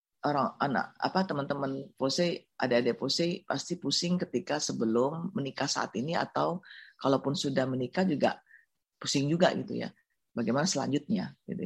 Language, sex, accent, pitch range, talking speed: Indonesian, female, native, 130-175 Hz, 135 wpm